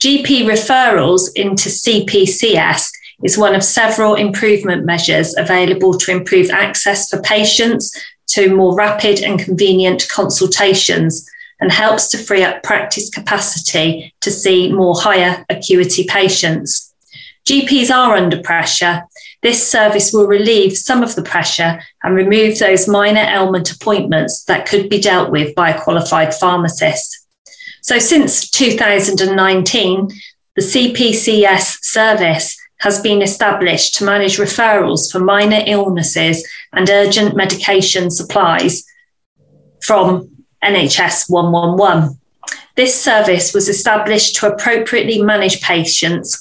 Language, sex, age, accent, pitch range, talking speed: English, female, 30-49, British, 180-210 Hz, 120 wpm